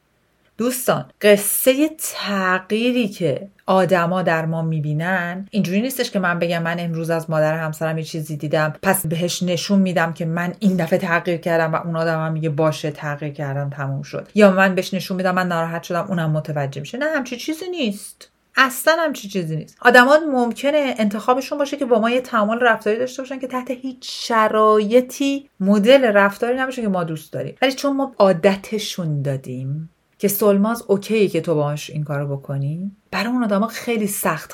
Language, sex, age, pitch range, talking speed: Persian, female, 40-59, 165-235 Hz, 175 wpm